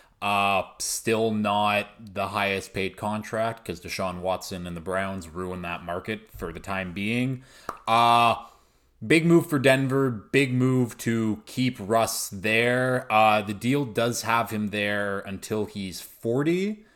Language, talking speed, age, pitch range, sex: English, 145 wpm, 20-39, 95-115 Hz, male